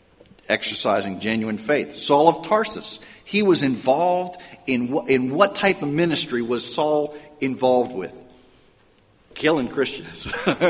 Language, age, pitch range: English, 50-69, 135-195 Hz